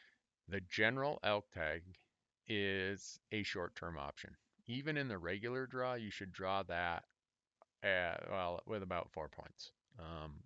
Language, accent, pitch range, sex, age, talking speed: English, American, 90-110 Hz, male, 40-59, 140 wpm